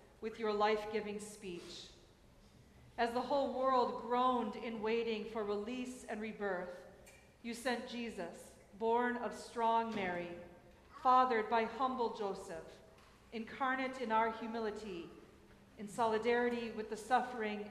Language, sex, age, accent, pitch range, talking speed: English, female, 40-59, American, 210-240 Hz, 120 wpm